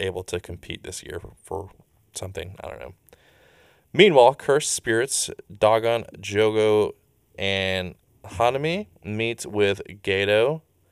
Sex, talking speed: male, 110 wpm